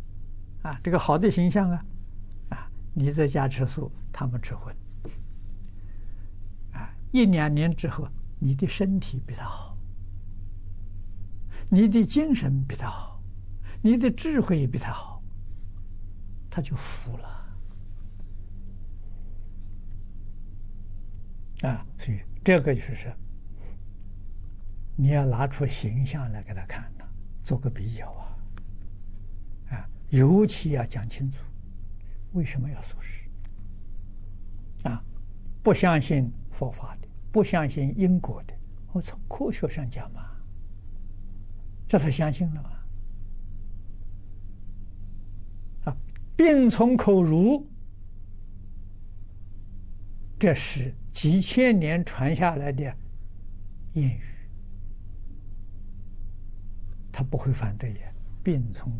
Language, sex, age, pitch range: Chinese, male, 60-79, 95-135 Hz